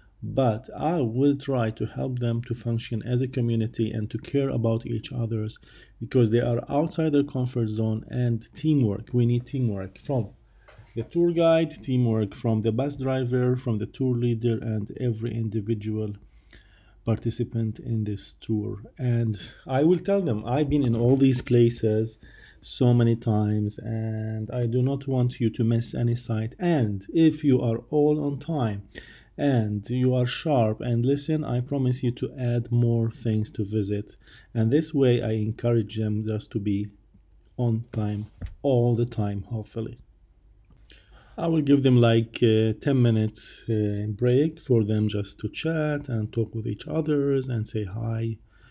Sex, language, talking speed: male, English, 165 wpm